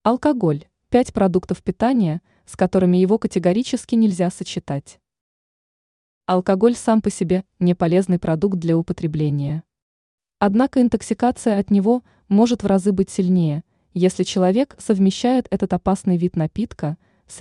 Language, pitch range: Russian, 175-220 Hz